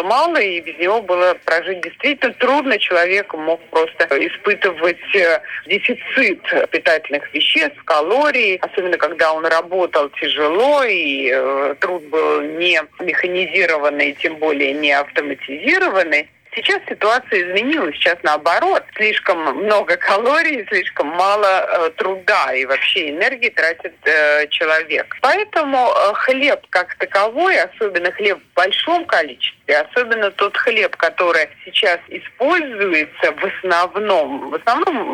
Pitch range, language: 160-230 Hz, Russian